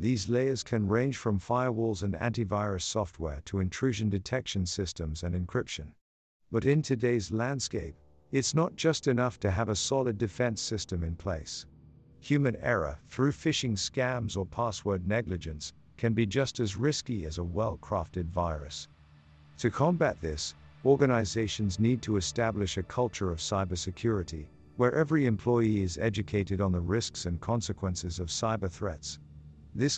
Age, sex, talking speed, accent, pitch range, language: 50-69, male, 145 wpm, American, 90-120 Hz, English